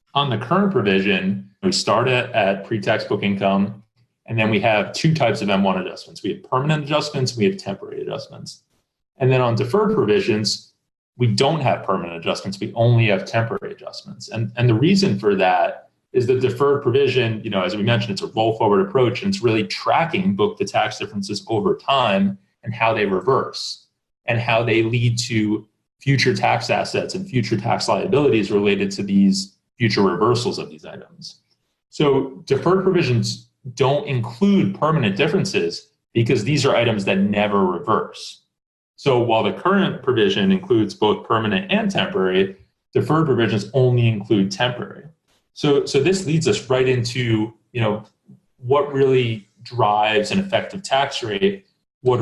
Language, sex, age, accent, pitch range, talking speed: English, male, 30-49, American, 110-185 Hz, 165 wpm